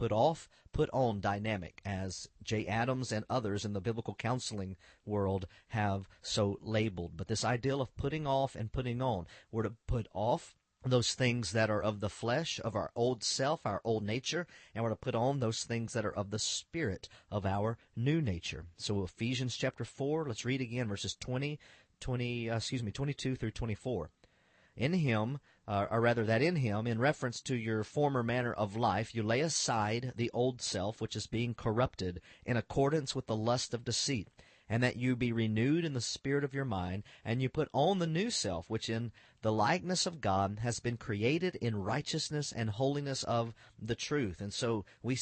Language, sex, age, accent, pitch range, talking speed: English, male, 40-59, American, 105-130 Hz, 190 wpm